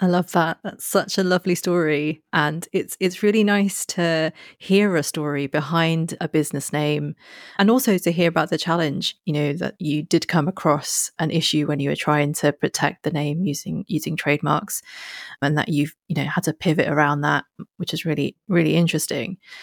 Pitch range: 155-185 Hz